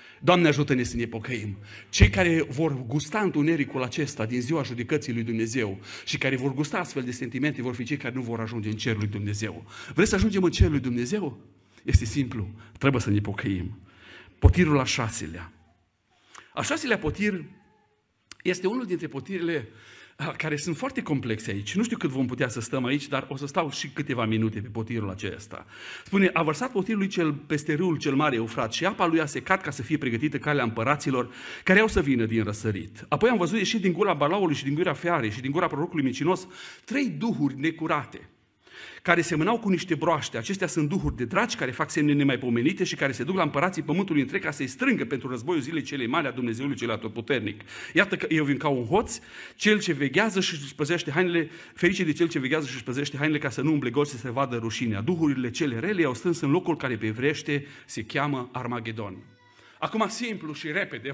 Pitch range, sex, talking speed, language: 120-165 Hz, male, 205 wpm, Romanian